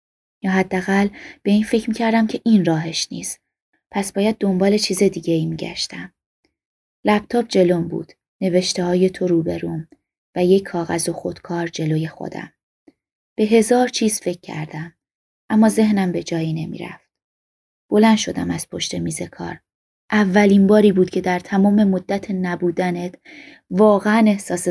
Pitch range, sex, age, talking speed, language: 170-215 Hz, female, 20-39, 140 wpm, Persian